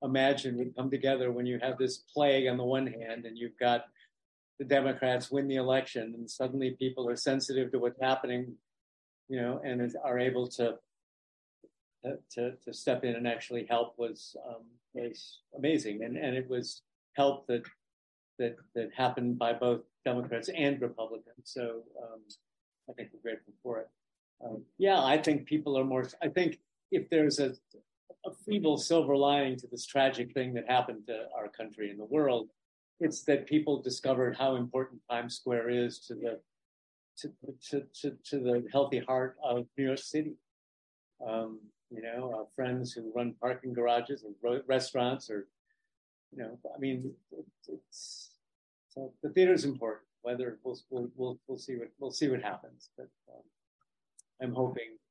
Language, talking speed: English, 170 wpm